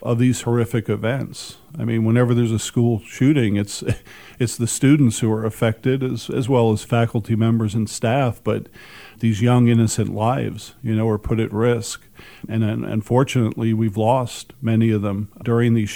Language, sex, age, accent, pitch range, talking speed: English, male, 50-69, American, 110-120 Hz, 175 wpm